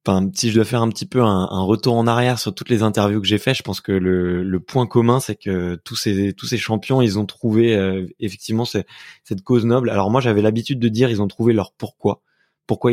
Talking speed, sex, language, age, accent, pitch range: 255 wpm, male, French, 20-39, French, 105-125 Hz